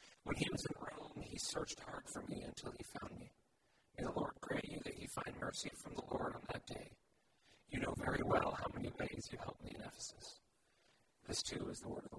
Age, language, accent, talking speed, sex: 50-69, English, American, 235 wpm, male